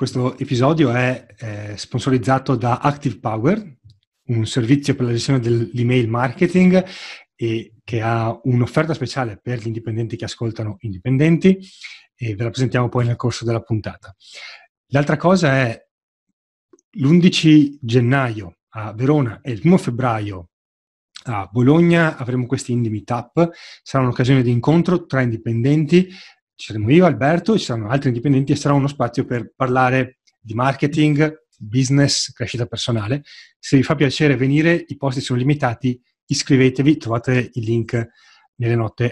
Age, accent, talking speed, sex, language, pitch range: 30-49, native, 140 wpm, male, Italian, 120-150 Hz